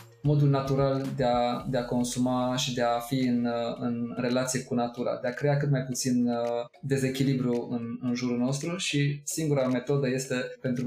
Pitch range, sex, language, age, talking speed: 120-140 Hz, male, Romanian, 20-39, 175 wpm